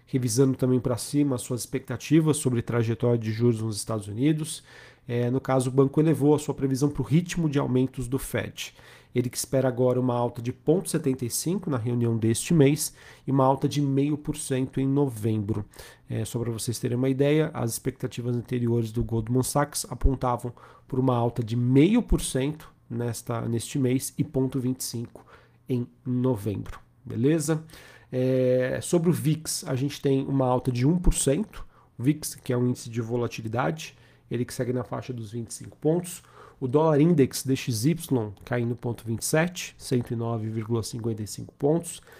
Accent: Brazilian